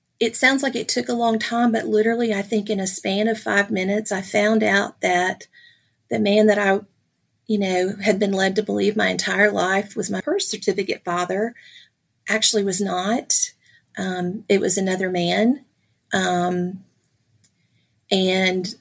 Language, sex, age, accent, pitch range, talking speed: English, female, 40-59, American, 185-215 Hz, 165 wpm